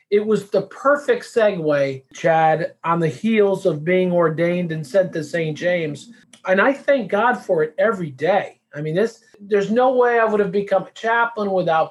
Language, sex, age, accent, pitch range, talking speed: English, male, 40-59, American, 170-220 Hz, 185 wpm